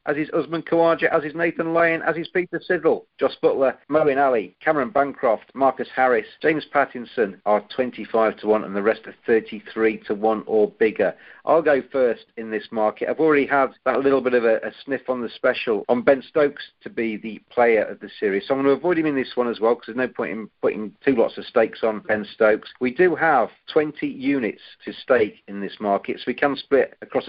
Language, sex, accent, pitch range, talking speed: English, male, British, 110-150 Hz, 230 wpm